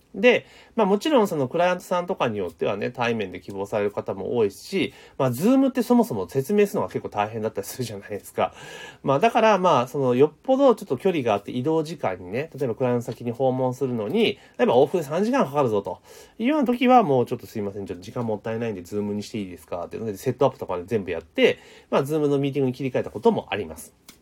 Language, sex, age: Japanese, male, 30-49